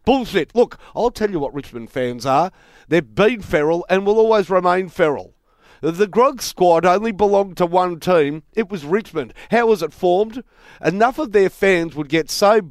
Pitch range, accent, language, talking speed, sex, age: 155-215 Hz, Australian, English, 185 wpm, male, 50-69